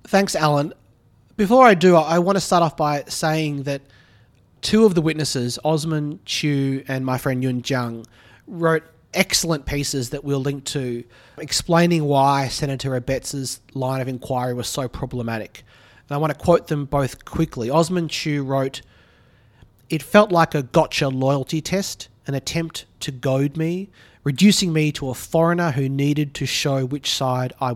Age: 30-49